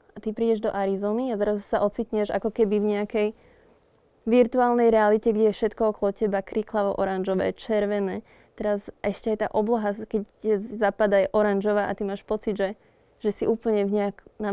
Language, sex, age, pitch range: Slovak, female, 20-39, 205-225 Hz